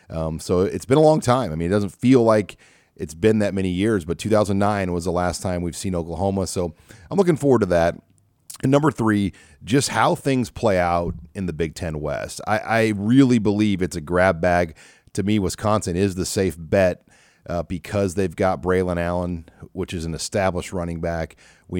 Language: English